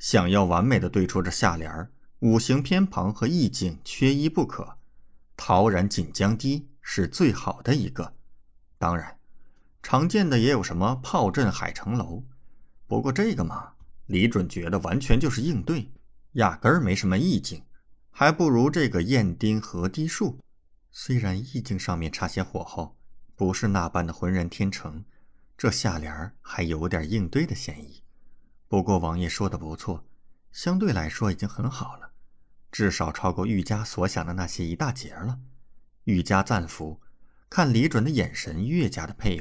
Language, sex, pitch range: Chinese, male, 85-125 Hz